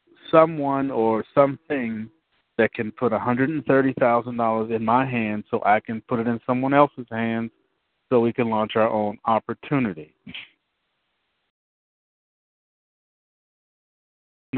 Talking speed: 110 wpm